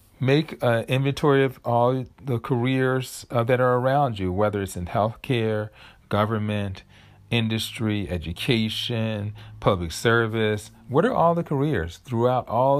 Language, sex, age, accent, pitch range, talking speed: English, male, 40-59, American, 95-120 Hz, 135 wpm